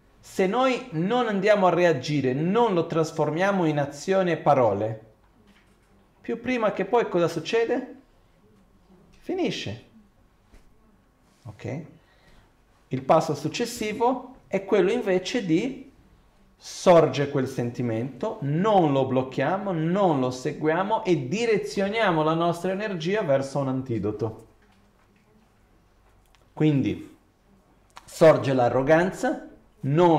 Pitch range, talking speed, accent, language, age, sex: 120-180 Hz, 95 wpm, native, Italian, 40-59, male